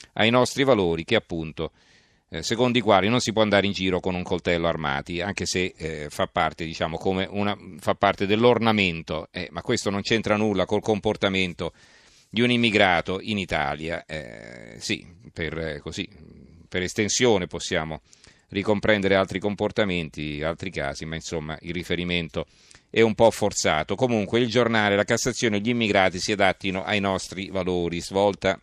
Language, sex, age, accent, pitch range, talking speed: Italian, male, 40-59, native, 90-110 Hz, 165 wpm